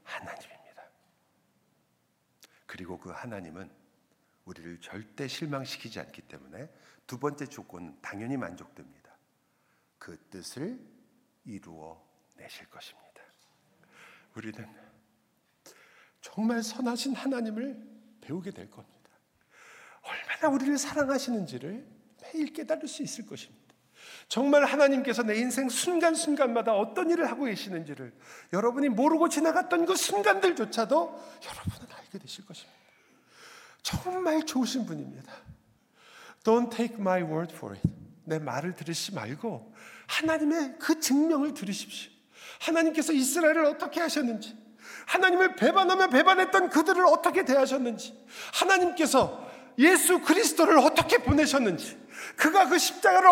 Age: 50-69